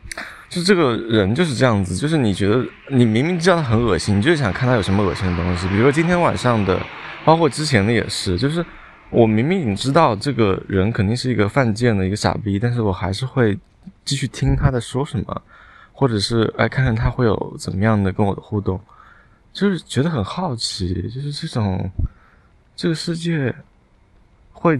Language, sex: Chinese, male